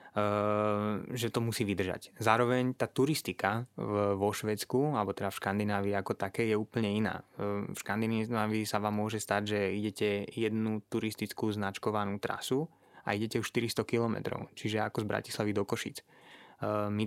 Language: Slovak